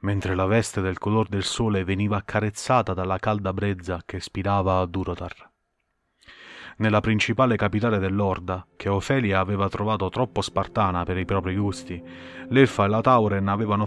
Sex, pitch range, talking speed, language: male, 95-110 Hz, 150 wpm, Italian